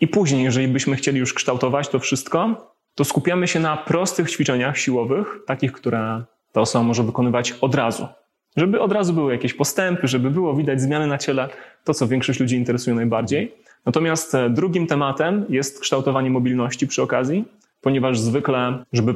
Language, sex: Polish, male